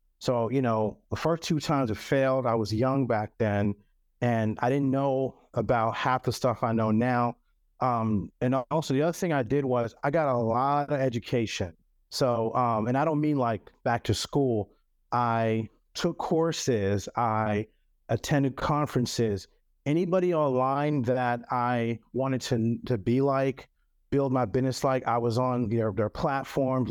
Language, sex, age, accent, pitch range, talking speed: English, male, 40-59, American, 115-135 Hz, 165 wpm